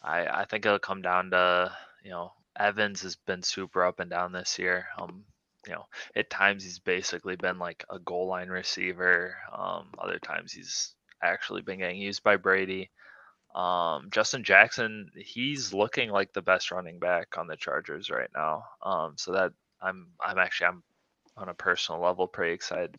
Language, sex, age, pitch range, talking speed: English, male, 20-39, 90-100 Hz, 180 wpm